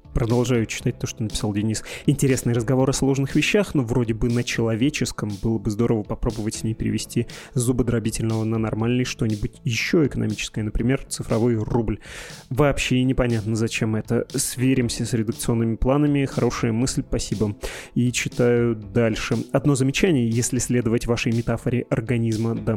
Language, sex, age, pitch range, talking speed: Russian, male, 20-39, 110-130 Hz, 145 wpm